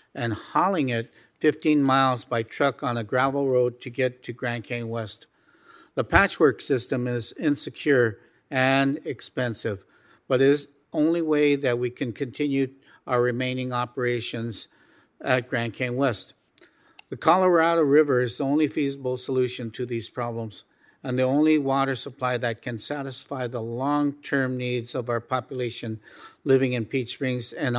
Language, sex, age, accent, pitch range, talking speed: English, male, 50-69, American, 120-140 Hz, 155 wpm